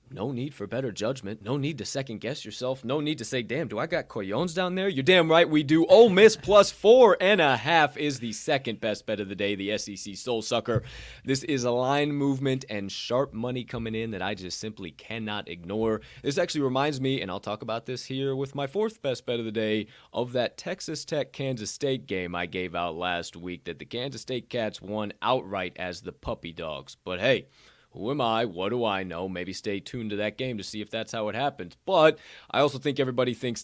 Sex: male